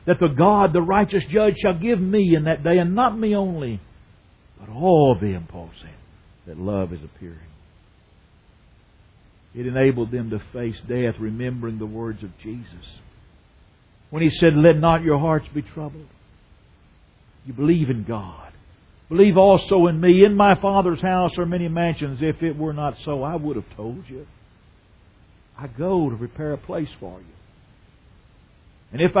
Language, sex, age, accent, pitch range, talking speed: English, male, 60-79, American, 95-160 Hz, 165 wpm